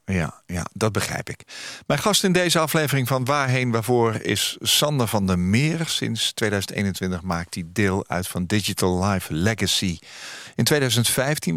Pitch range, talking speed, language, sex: 90-125 Hz, 155 wpm, Dutch, male